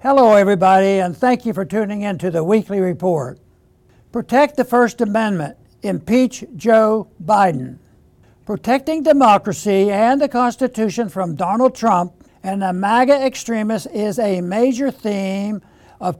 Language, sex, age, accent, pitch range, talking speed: English, male, 60-79, American, 185-240 Hz, 135 wpm